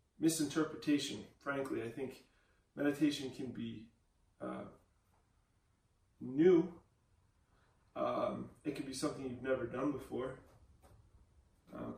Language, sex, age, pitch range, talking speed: English, male, 20-39, 110-145 Hz, 95 wpm